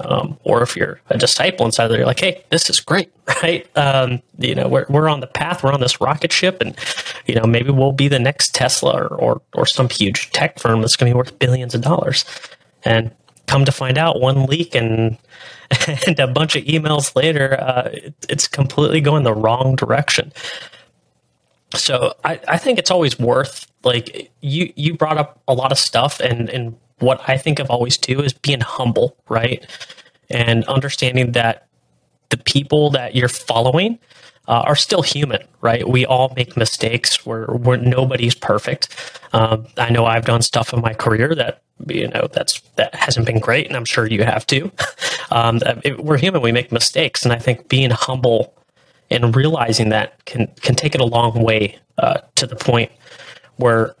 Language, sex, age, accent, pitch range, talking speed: English, male, 30-49, American, 115-145 Hz, 190 wpm